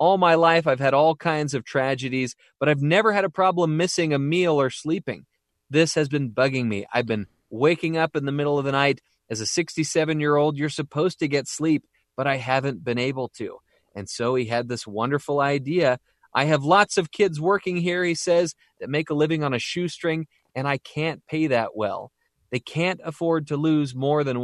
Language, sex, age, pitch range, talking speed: English, male, 30-49, 120-160 Hz, 210 wpm